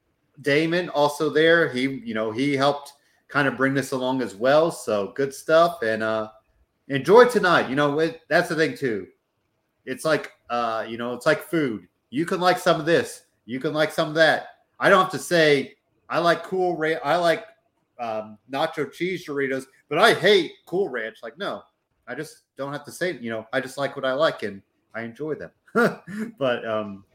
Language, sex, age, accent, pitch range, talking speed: English, male, 30-49, American, 120-155 Hz, 200 wpm